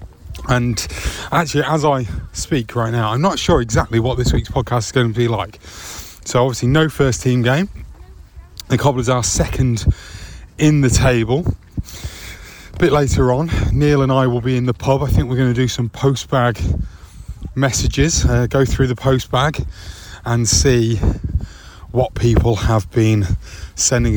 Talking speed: 170 wpm